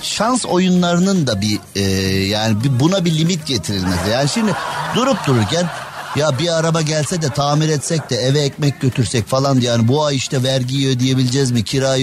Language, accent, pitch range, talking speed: Turkish, native, 120-165 Hz, 170 wpm